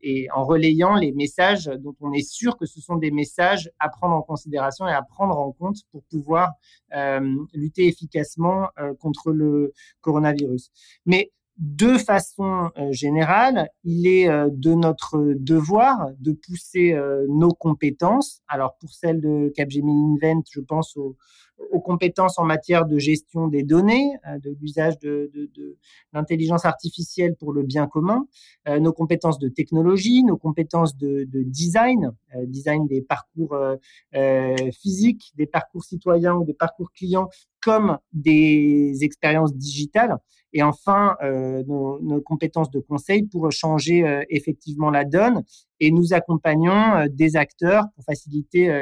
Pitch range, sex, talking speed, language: 145-175 Hz, male, 145 wpm, English